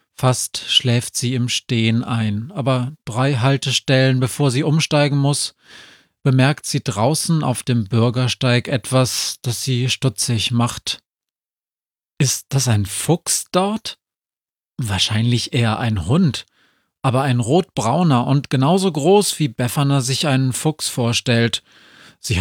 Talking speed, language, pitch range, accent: 125 wpm, German, 115-140 Hz, German